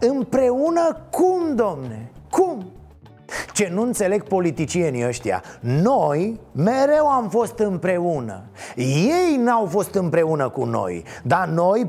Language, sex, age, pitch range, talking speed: Romanian, male, 30-49, 160-225 Hz, 110 wpm